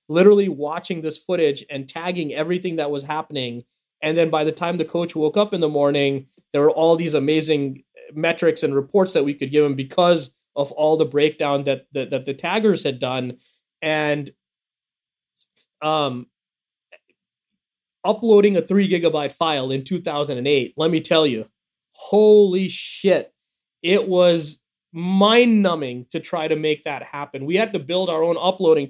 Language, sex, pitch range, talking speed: English, male, 145-180 Hz, 165 wpm